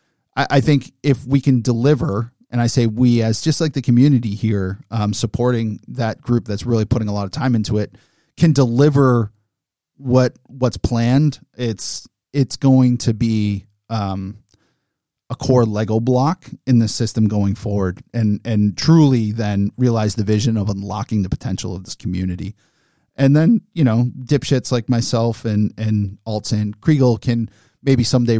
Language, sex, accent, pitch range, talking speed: English, male, American, 105-130 Hz, 165 wpm